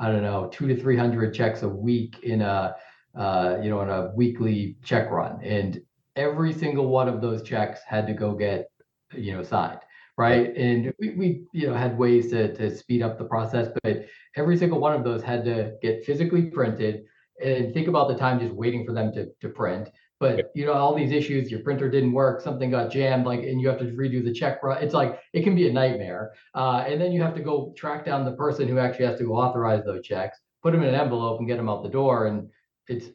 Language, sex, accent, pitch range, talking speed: English, male, American, 115-145 Hz, 235 wpm